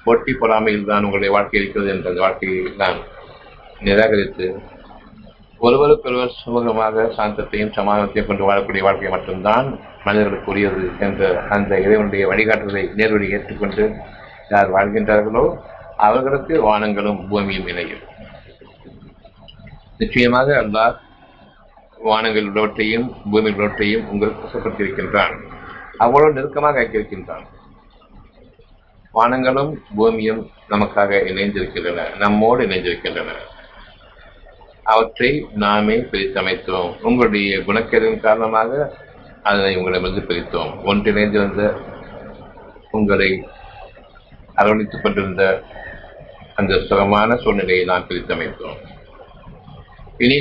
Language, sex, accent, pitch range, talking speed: Tamil, male, native, 100-115 Hz, 80 wpm